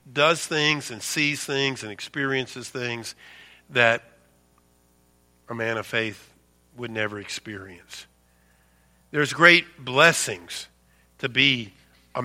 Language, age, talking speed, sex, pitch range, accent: English, 50-69, 110 wpm, male, 110-155 Hz, American